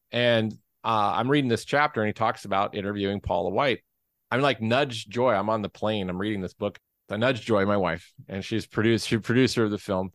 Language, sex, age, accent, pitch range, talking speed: English, male, 30-49, American, 95-120 Hz, 225 wpm